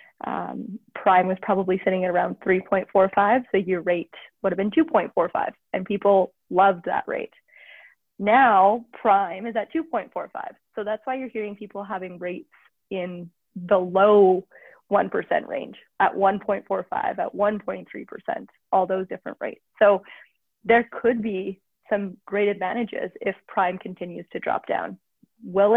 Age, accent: 20-39, American